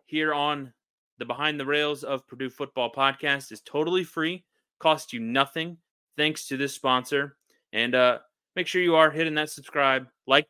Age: 20-39